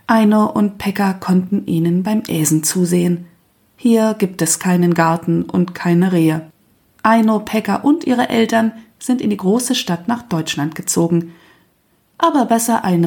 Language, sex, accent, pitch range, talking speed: German, female, German, 175-240 Hz, 145 wpm